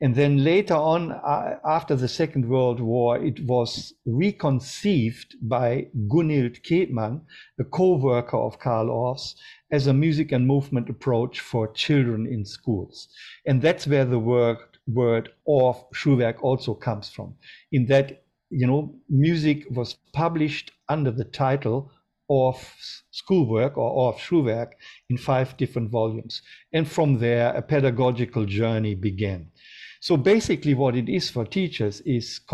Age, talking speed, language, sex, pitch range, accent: 50-69, 140 wpm, English, male, 120-160 Hz, German